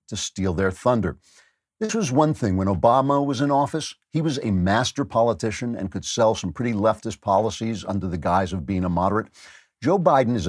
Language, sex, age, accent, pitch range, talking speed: English, male, 50-69, American, 95-125 Hz, 200 wpm